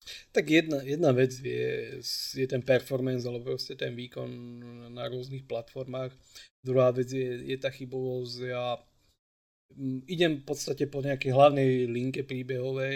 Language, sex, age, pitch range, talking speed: Slovak, male, 20-39, 120-135 Hz, 135 wpm